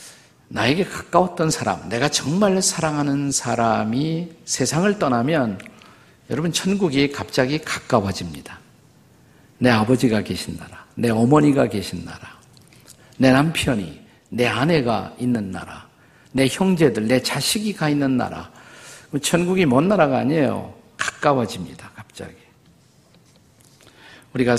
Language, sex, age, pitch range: Korean, male, 50-69, 115-150 Hz